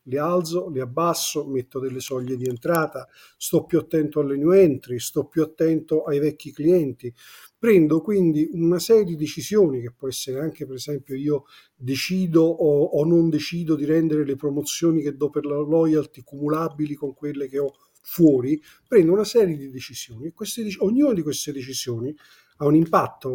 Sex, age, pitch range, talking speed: male, 50-69, 135-165 Hz, 170 wpm